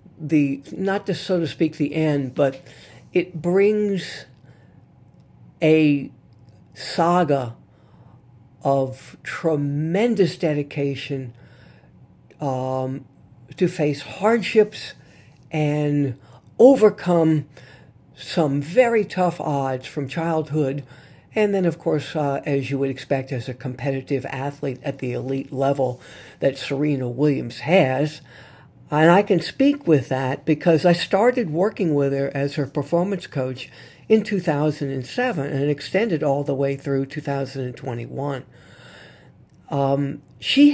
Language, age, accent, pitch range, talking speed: English, 60-79, American, 135-165 Hz, 110 wpm